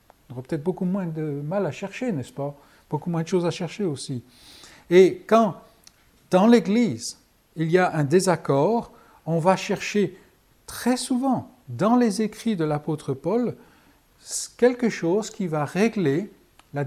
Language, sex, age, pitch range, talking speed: French, male, 60-79, 145-195 Hz, 155 wpm